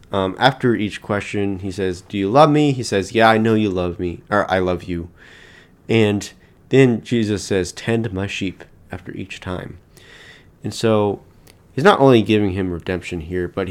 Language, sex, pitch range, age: English, male, 90-115 Hz, 30-49